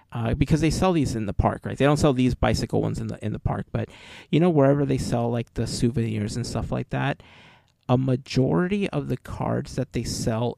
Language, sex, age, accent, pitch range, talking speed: English, male, 30-49, American, 115-140 Hz, 225 wpm